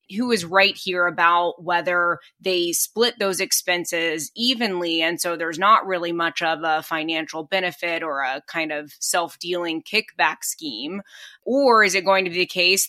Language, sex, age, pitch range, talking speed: English, female, 20-39, 175-210 Hz, 170 wpm